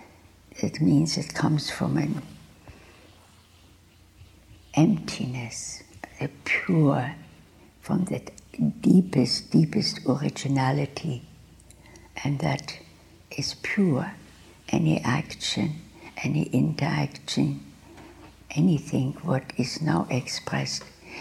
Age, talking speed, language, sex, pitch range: 60-79, 75 wpm, English, female, 100-150 Hz